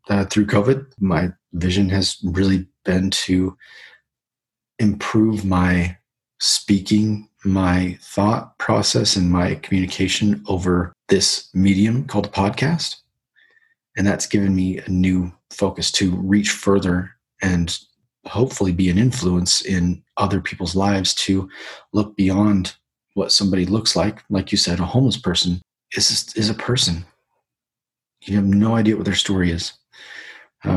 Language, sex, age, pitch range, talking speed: English, male, 30-49, 90-105 Hz, 135 wpm